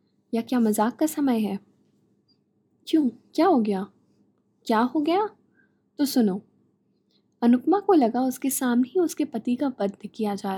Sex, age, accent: female, 10-29, native